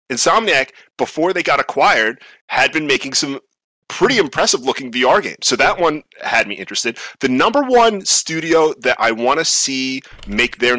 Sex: male